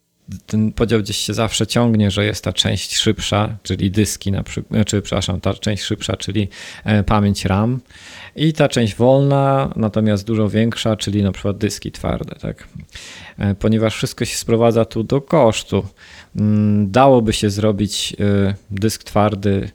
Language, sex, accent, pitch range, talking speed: Polish, male, native, 100-115 Hz, 145 wpm